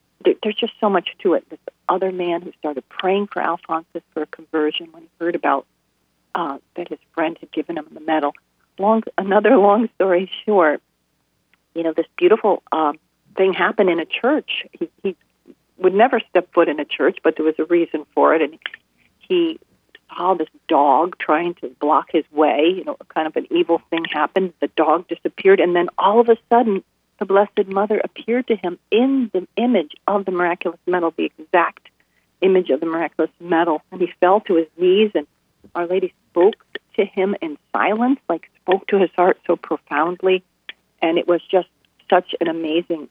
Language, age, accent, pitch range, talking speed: English, 40-59, American, 165-205 Hz, 190 wpm